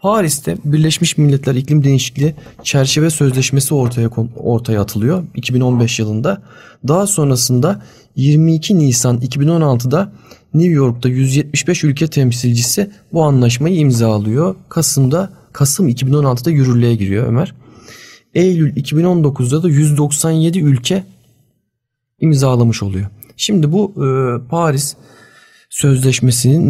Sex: male